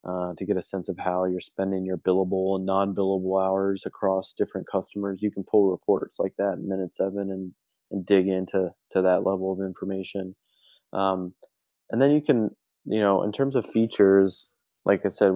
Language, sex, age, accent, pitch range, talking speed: English, male, 20-39, American, 95-105 Hz, 195 wpm